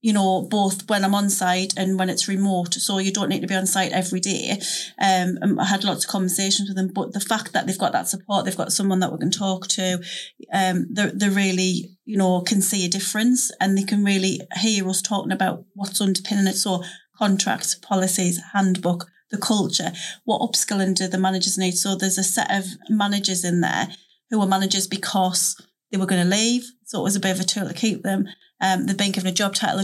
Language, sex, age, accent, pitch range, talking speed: English, female, 30-49, British, 185-200 Hz, 225 wpm